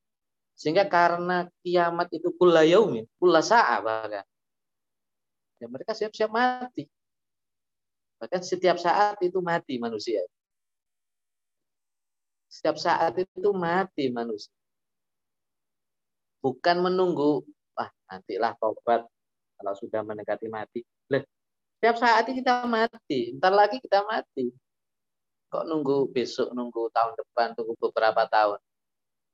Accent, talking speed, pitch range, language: native, 105 wpm, 115-185 Hz, Indonesian